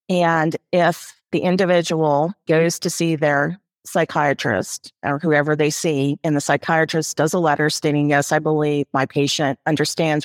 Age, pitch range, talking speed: 40-59, 140-160 Hz, 150 wpm